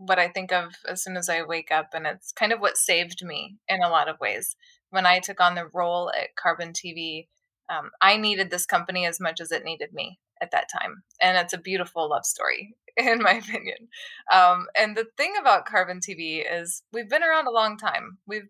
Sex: female